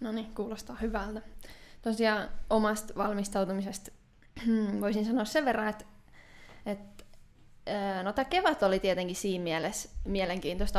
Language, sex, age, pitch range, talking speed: Finnish, female, 10-29, 185-215 Hz, 115 wpm